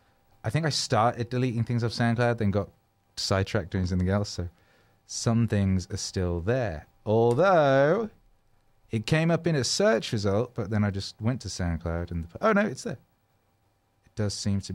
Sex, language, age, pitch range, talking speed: male, English, 30-49, 95-125 Hz, 185 wpm